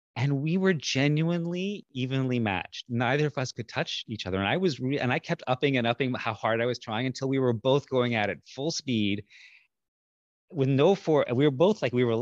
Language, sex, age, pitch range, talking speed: English, male, 30-49, 115-160 Hz, 230 wpm